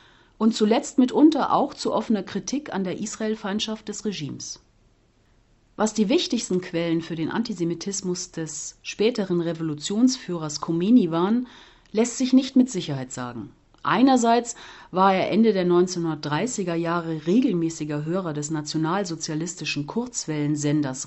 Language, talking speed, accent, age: German, 120 wpm, German, 40-59